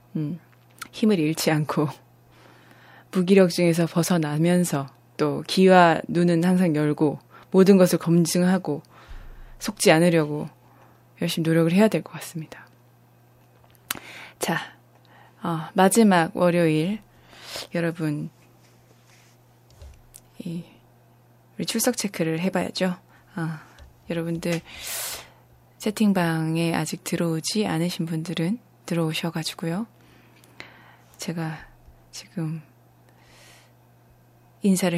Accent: native